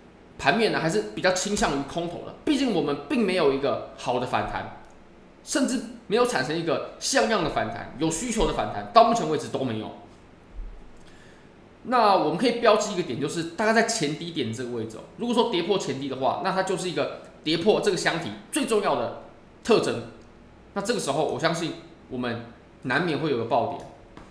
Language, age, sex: Chinese, 20-39, male